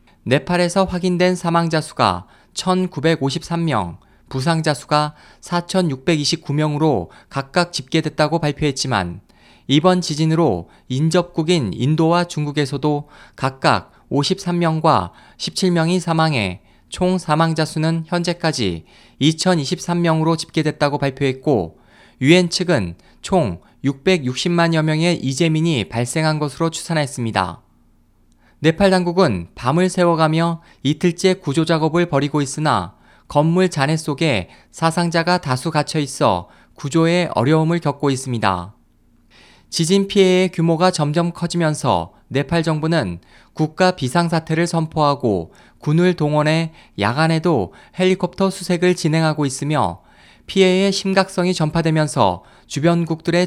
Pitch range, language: 140-170 Hz, Korean